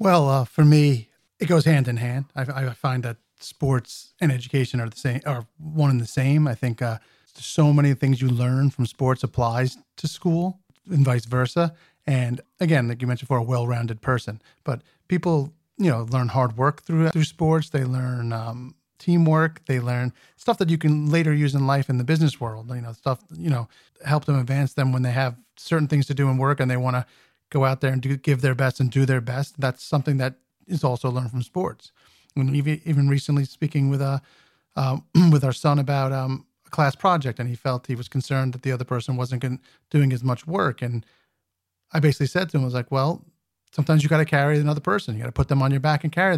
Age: 30-49